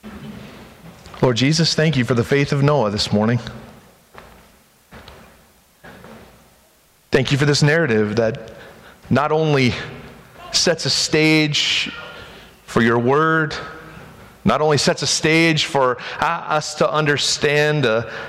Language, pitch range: English, 120-150 Hz